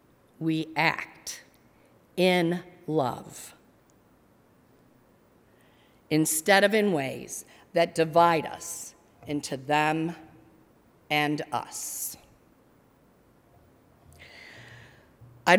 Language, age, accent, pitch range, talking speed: English, 50-69, American, 150-190 Hz, 60 wpm